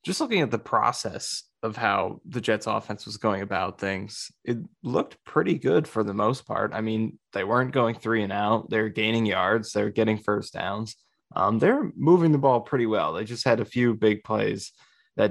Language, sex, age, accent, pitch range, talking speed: English, male, 20-39, American, 105-120 Hz, 205 wpm